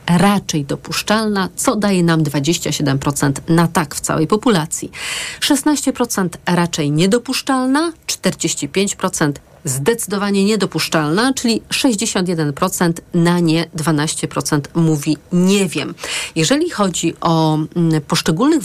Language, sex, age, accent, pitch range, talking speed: Polish, female, 40-59, native, 160-210 Hz, 95 wpm